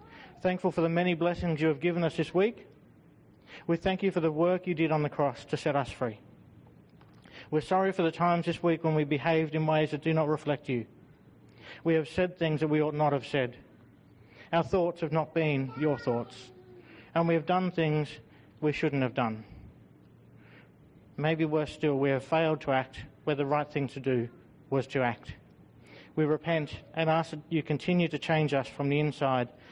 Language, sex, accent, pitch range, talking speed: English, male, Australian, 135-165 Hz, 200 wpm